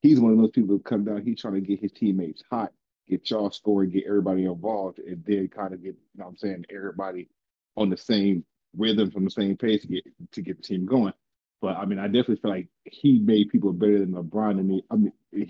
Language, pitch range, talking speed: English, 95-110 Hz, 250 wpm